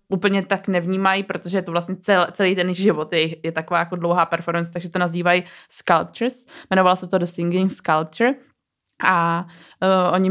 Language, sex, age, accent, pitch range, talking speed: Czech, female, 20-39, native, 175-190 Hz, 170 wpm